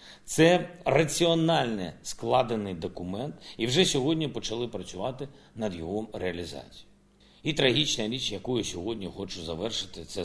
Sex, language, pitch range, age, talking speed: male, Ukrainian, 95-125 Hz, 50-69, 130 wpm